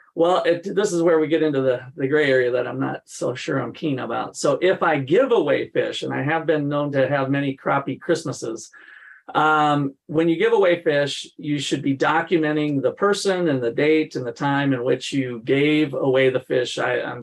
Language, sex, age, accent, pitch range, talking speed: English, male, 40-59, American, 135-175 Hz, 220 wpm